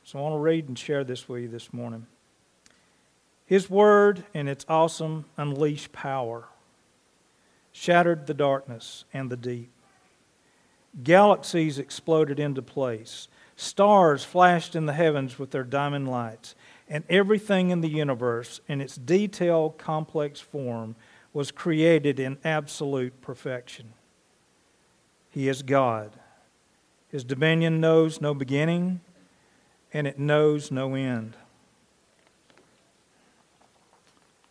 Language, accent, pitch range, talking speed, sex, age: English, American, 130-170 Hz, 115 wpm, male, 50-69